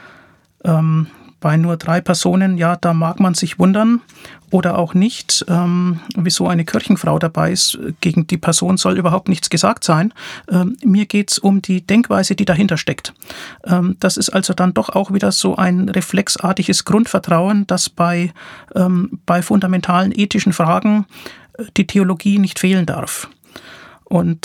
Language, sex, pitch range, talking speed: German, male, 170-195 Hz, 155 wpm